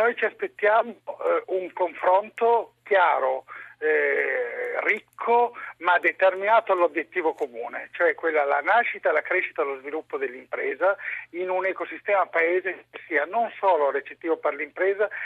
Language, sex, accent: Italian, male, native